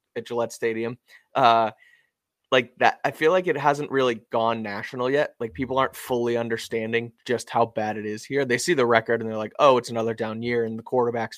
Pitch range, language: 110-125 Hz, English